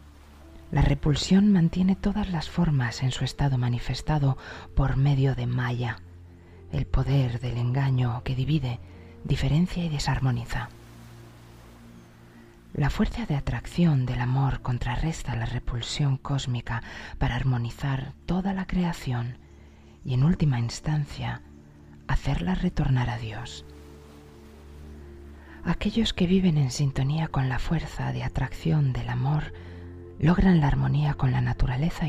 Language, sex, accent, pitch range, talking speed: Spanish, female, Spanish, 115-150 Hz, 120 wpm